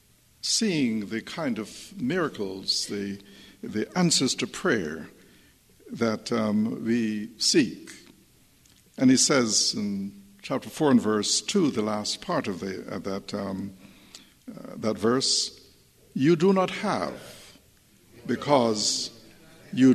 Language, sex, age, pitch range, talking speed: English, male, 60-79, 105-160 Hz, 120 wpm